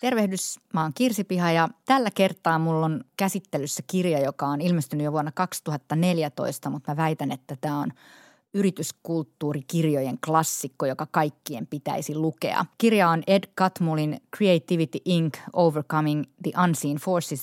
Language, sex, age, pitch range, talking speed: Finnish, female, 20-39, 150-180 Hz, 135 wpm